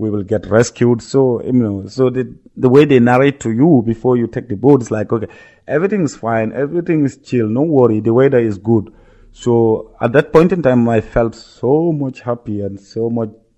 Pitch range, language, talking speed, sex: 100-120 Hz, English, 210 wpm, male